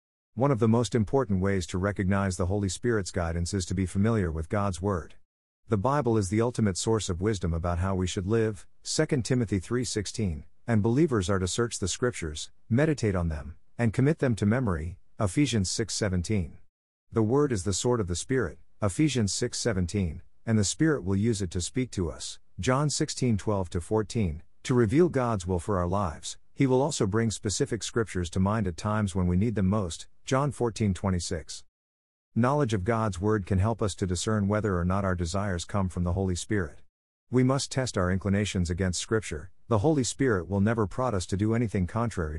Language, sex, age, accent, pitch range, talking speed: English, male, 50-69, American, 90-115 Hz, 190 wpm